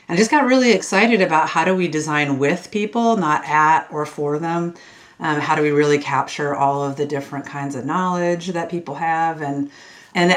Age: 40-59